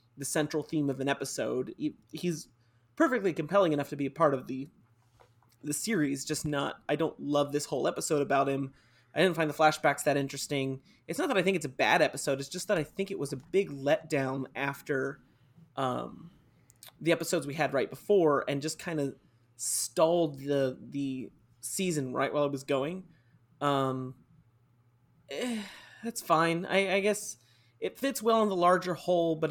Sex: male